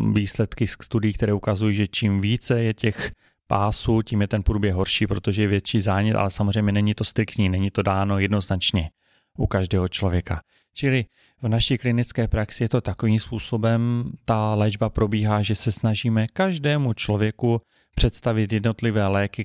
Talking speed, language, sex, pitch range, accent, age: 155 wpm, Czech, male, 105-125 Hz, native, 30-49